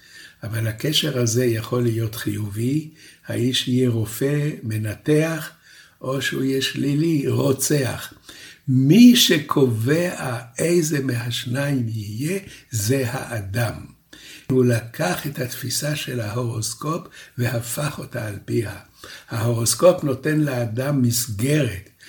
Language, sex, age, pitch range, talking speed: Hebrew, male, 60-79, 115-145 Hz, 100 wpm